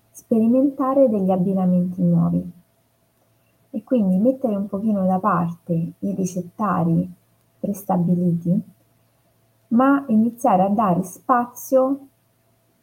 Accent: native